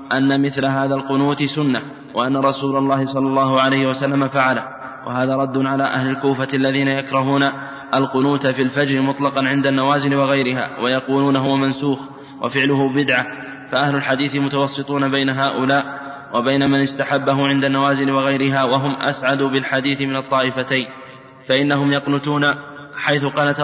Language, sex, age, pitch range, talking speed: Arabic, male, 20-39, 135-140 Hz, 130 wpm